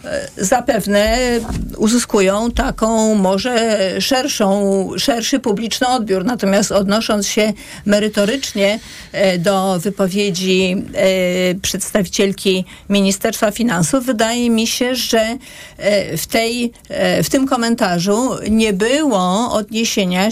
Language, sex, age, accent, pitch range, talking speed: Polish, female, 50-69, native, 195-235 Hz, 85 wpm